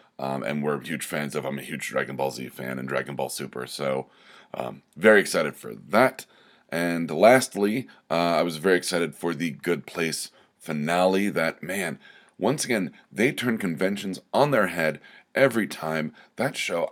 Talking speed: 175 wpm